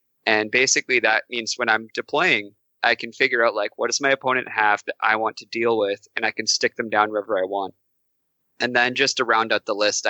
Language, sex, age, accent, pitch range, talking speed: English, male, 20-39, American, 105-135 Hz, 240 wpm